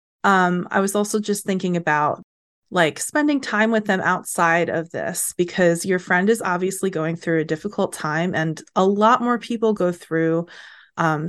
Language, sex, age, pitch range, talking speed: English, female, 30-49, 165-195 Hz, 175 wpm